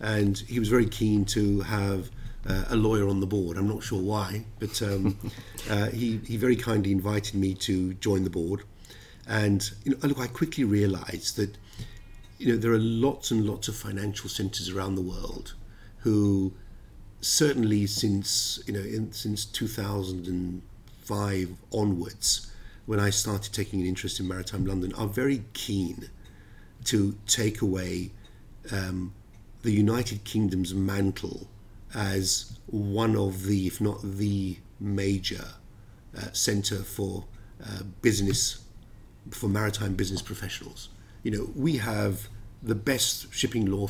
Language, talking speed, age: English, 150 wpm, 50-69